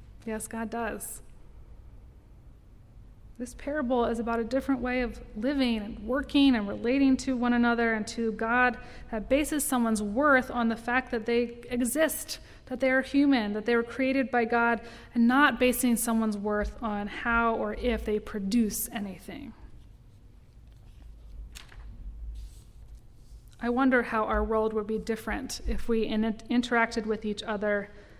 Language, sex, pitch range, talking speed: English, female, 215-250 Hz, 145 wpm